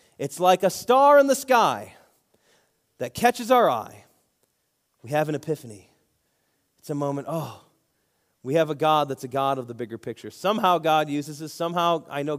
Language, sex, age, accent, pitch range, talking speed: English, male, 30-49, American, 120-175 Hz, 180 wpm